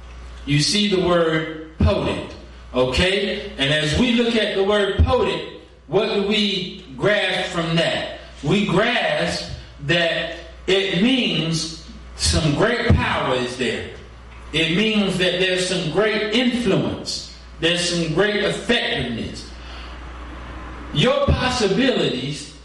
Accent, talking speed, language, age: American, 115 wpm, English, 40-59